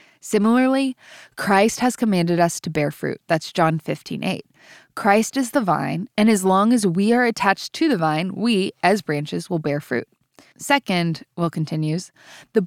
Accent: American